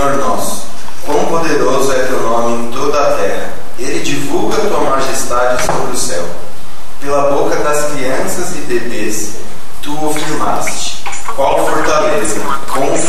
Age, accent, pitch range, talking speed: 20-39, Brazilian, 115-145 Hz, 135 wpm